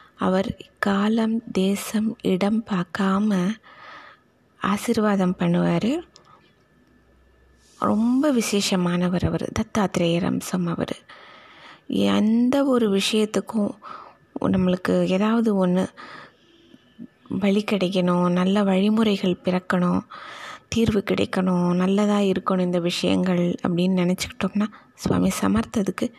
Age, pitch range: 20-39, 180-220 Hz